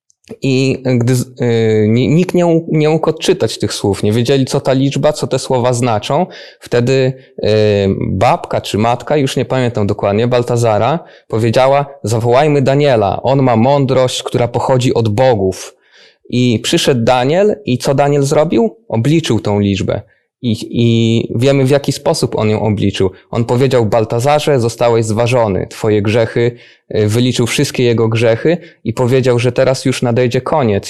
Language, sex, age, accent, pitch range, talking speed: Polish, male, 20-39, native, 115-135 Hz, 150 wpm